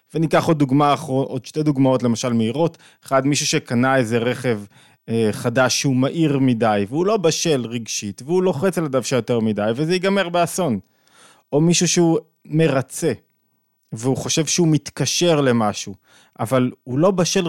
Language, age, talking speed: Hebrew, 20-39, 150 wpm